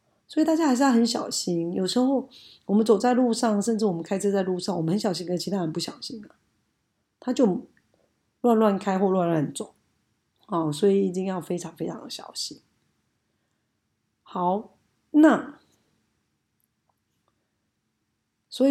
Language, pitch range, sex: Chinese, 170-230 Hz, female